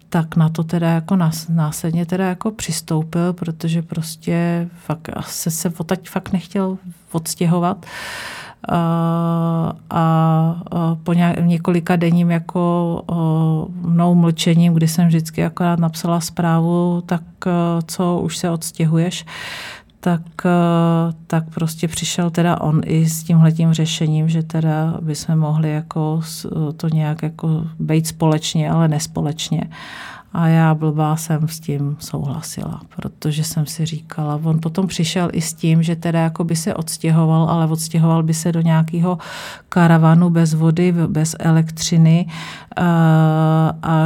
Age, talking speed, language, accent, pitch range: 40-59, 125 wpm, Czech, native, 160-175 Hz